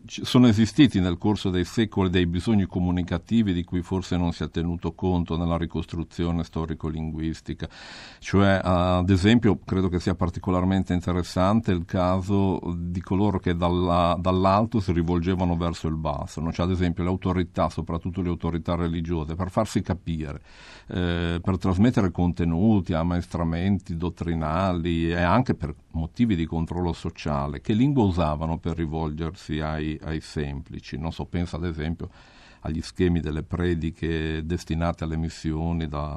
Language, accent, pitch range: Italian, native, 80-95 Hz